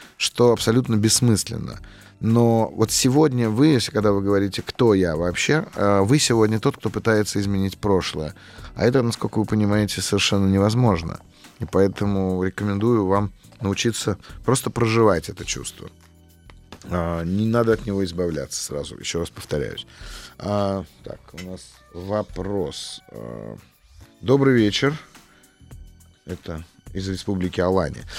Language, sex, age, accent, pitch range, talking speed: Russian, male, 30-49, native, 95-110 Hz, 120 wpm